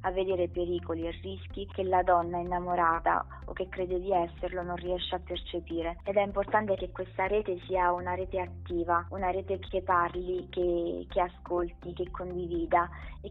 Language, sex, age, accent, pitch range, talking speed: Italian, female, 20-39, native, 170-185 Hz, 170 wpm